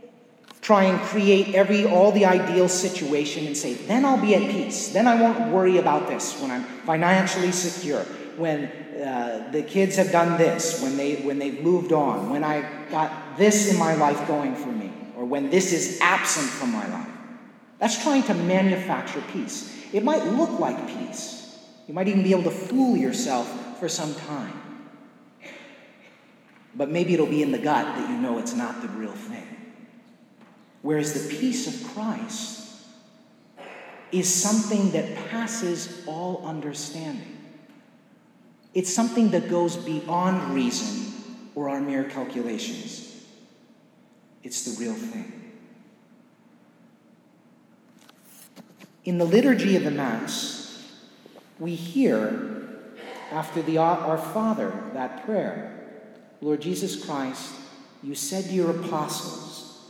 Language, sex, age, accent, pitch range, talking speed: English, male, 30-49, American, 165-230 Hz, 140 wpm